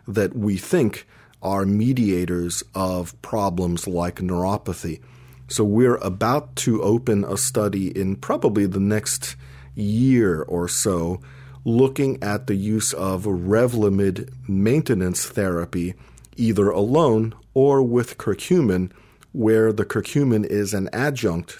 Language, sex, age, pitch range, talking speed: English, male, 40-59, 95-115 Hz, 115 wpm